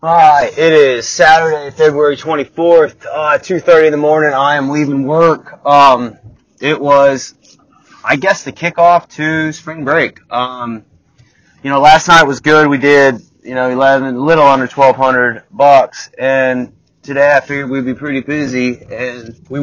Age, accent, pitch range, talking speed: 20-39, American, 120-150 Hz, 170 wpm